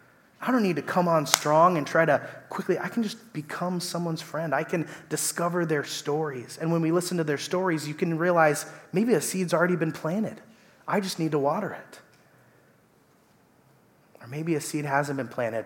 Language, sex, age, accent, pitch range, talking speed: English, male, 30-49, American, 125-160 Hz, 195 wpm